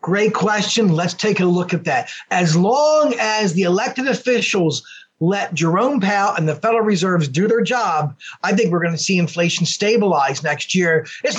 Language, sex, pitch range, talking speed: English, male, 170-220 Hz, 185 wpm